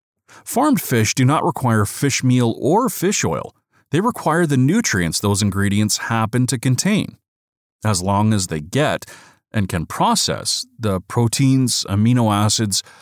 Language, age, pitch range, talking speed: English, 40-59, 105-135 Hz, 145 wpm